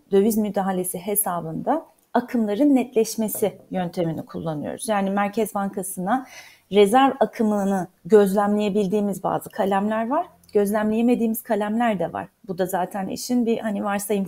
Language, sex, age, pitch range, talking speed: Turkish, female, 30-49, 200-255 Hz, 115 wpm